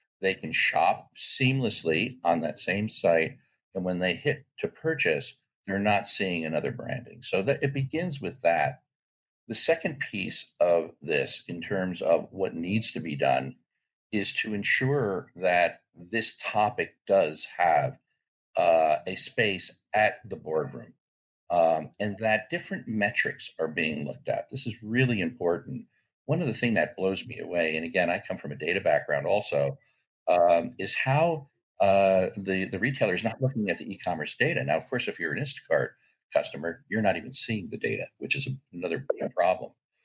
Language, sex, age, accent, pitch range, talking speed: English, male, 60-79, American, 95-135 Hz, 170 wpm